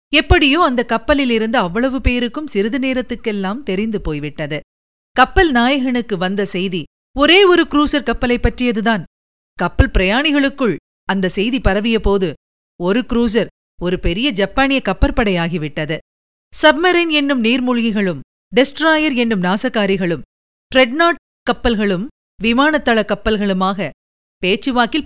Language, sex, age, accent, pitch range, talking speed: Tamil, female, 50-69, native, 190-275 Hz, 100 wpm